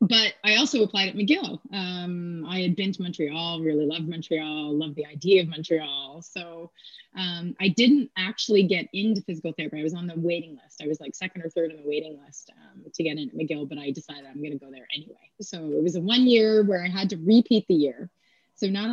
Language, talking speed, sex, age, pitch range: English, 235 wpm, female, 30-49, 160-205 Hz